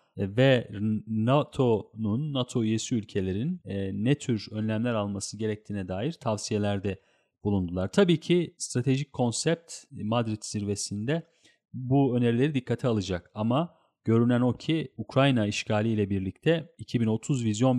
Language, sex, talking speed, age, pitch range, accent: Turkish, male, 110 wpm, 40-59, 100-130 Hz, native